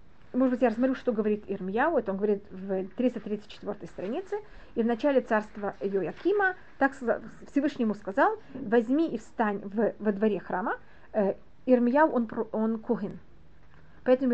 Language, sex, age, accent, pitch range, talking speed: Russian, female, 30-49, native, 210-270 Hz, 140 wpm